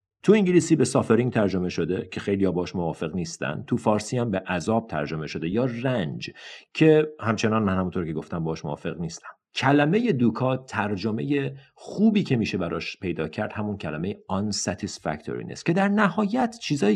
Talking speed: 160 wpm